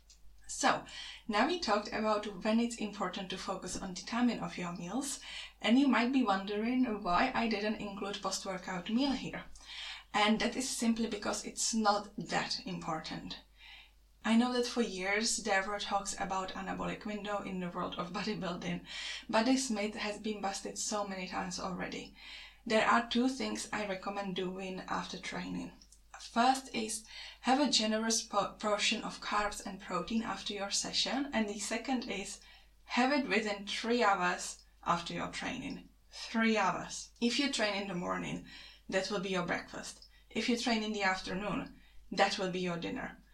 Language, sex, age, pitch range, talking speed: English, female, 10-29, 195-230 Hz, 170 wpm